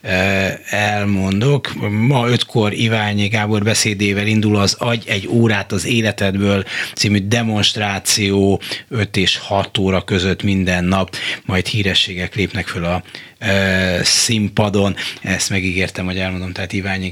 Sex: male